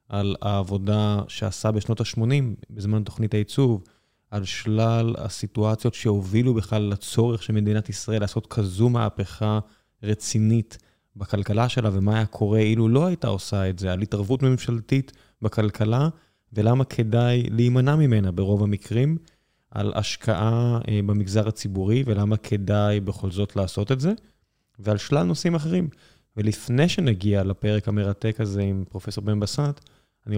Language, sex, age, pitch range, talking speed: Hebrew, male, 20-39, 105-130 Hz, 135 wpm